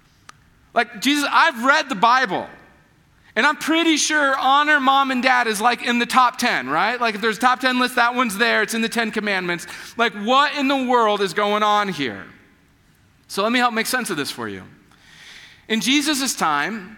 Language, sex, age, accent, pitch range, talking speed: English, male, 40-59, American, 175-240 Hz, 205 wpm